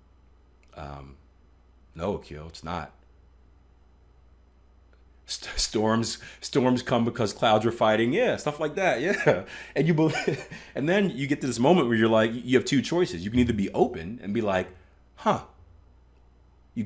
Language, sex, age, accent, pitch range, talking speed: English, male, 30-49, American, 75-120 Hz, 160 wpm